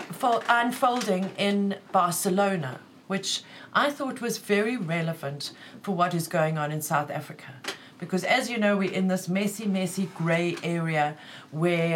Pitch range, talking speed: 165-210 Hz, 145 wpm